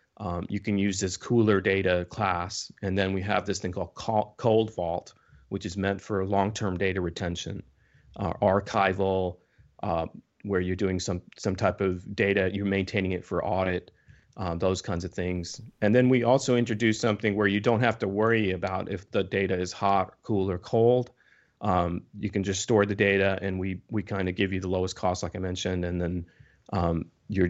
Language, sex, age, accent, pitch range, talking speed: English, male, 30-49, American, 95-110 Hz, 200 wpm